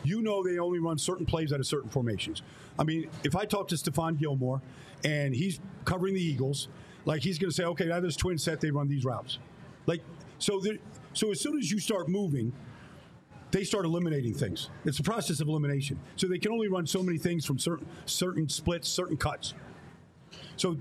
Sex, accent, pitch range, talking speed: male, American, 145-190 Hz, 200 wpm